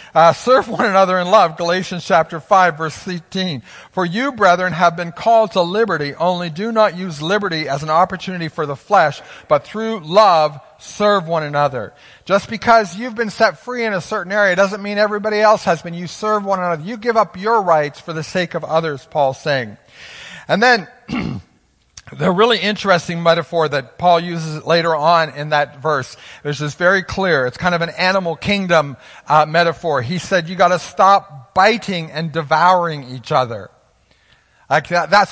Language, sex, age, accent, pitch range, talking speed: English, male, 50-69, American, 155-190 Hz, 185 wpm